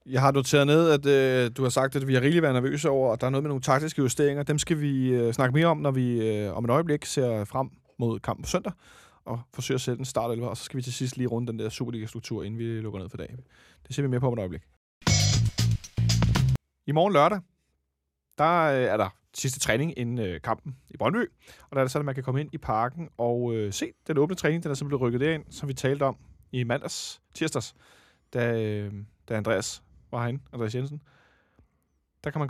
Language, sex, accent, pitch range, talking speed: Danish, male, native, 110-145 Hz, 240 wpm